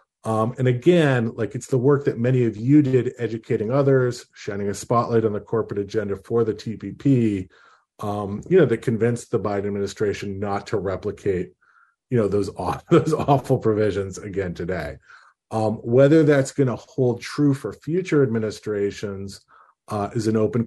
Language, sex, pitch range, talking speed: English, male, 100-125 Hz, 170 wpm